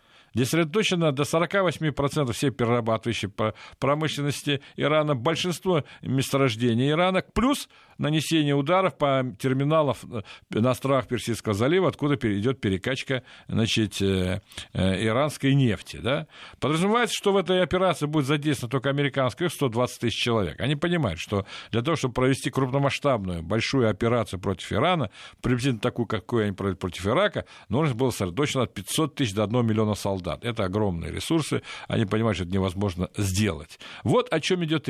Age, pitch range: 50-69, 110-160 Hz